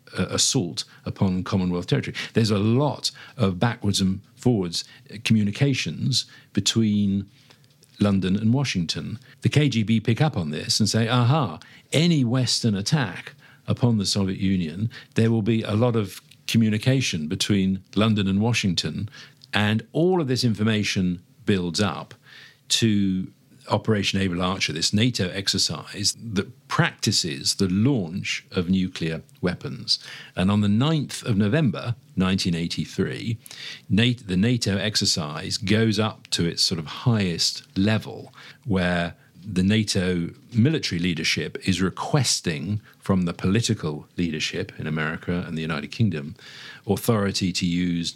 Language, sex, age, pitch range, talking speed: English, male, 50-69, 95-120 Hz, 130 wpm